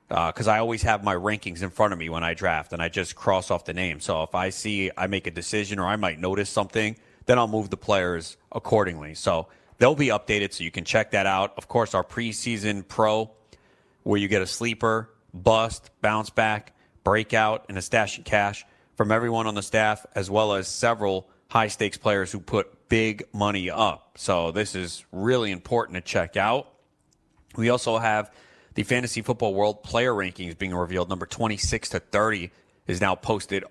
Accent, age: American, 30-49